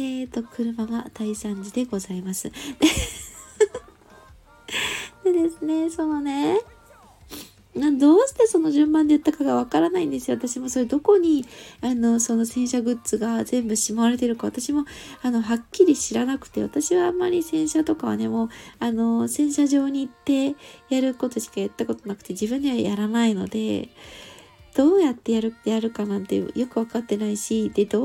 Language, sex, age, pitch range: Japanese, female, 20-39, 225-305 Hz